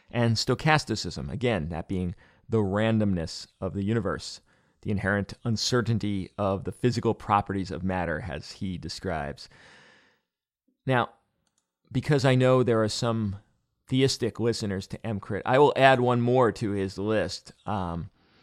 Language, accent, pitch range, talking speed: English, American, 95-120 Hz, 135 wpm